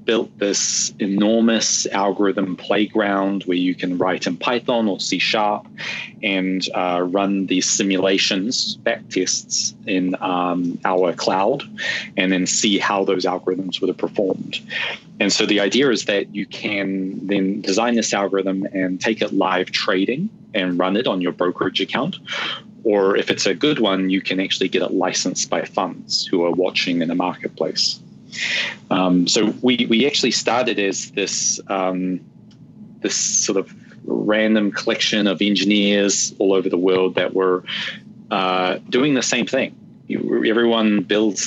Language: English